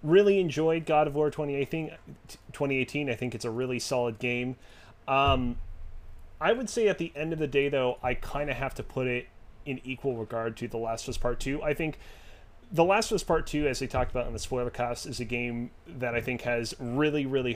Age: 30-49